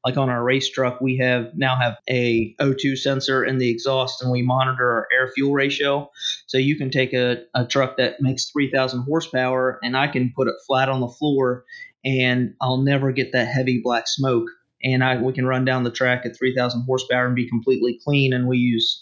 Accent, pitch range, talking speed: American, 125-135 Hz, 210 wpm